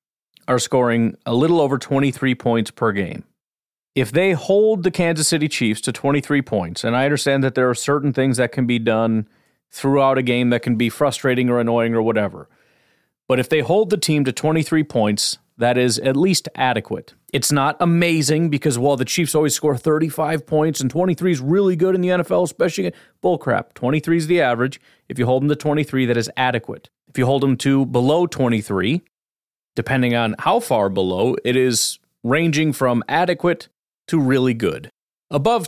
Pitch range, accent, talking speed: 120-150 Hz, American, 190 wpm